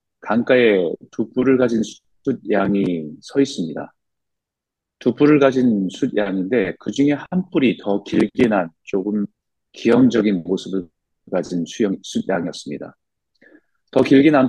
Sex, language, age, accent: male, Korean, 40-59, native